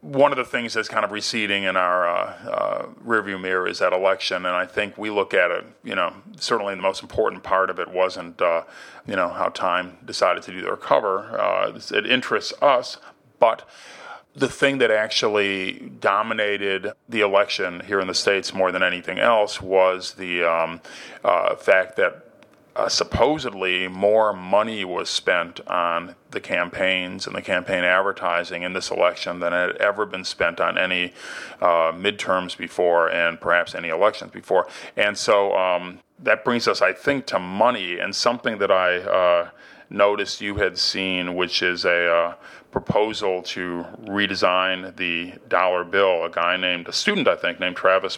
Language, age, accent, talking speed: English, 40-59, American, 175 wpm